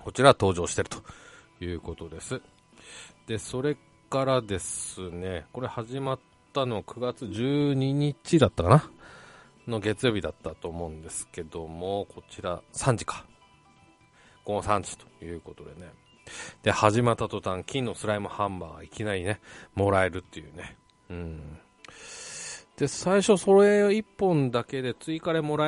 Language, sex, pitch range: Japanese, male, 90-140 Hz